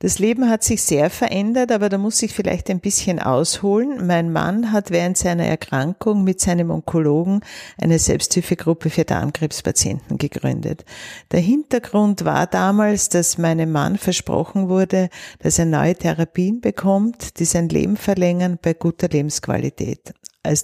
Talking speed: 145 wpm